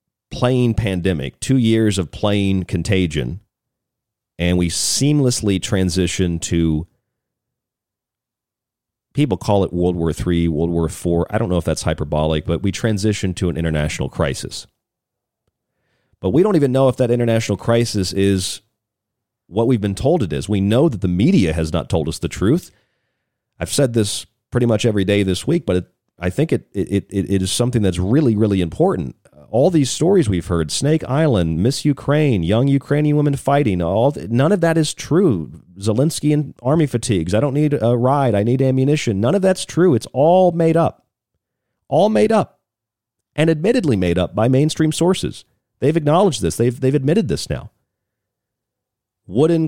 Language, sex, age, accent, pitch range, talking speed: English, male, 40-59, American, 95-135 Hz, 175 wpm